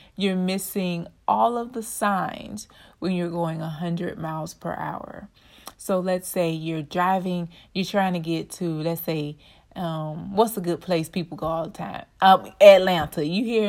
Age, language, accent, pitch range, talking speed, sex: 30-49, English, American, 170-215 Hz, 170 wpm, female